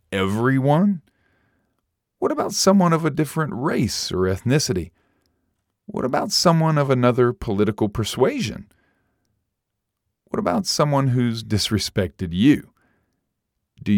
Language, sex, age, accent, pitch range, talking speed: English, male, 40-59, American, 100-140 Hz, 105 wpm